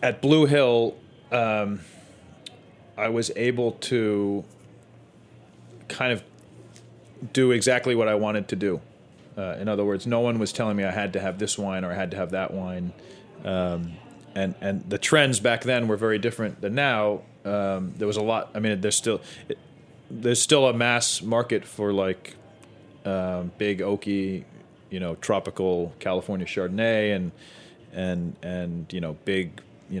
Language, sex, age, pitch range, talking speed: English, male, 30-49, 95-115 Hz, 165 wpm